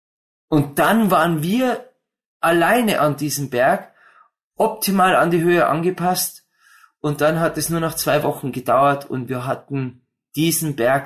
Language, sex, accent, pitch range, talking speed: German, male, German, 155-205 Hz, 145 wpm